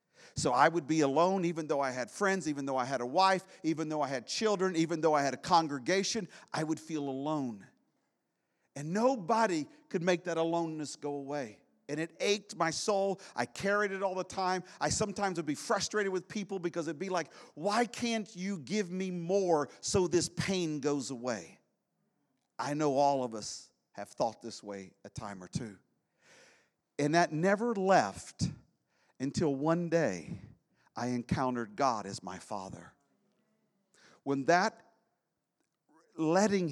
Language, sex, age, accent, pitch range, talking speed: English, male, 50-69, American, 145-185 Hz, 165 wpm